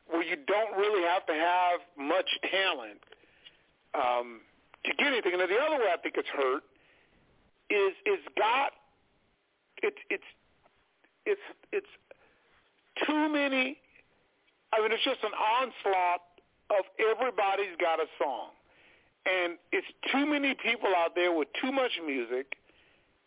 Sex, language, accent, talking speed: male, English, American, 135 wpm